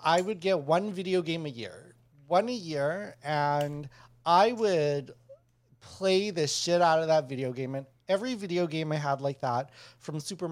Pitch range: 125-170 Hz